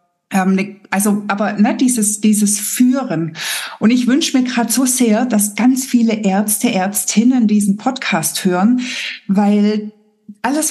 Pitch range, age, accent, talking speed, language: 205-250 Hz, 60-79, German, 130 wpm, German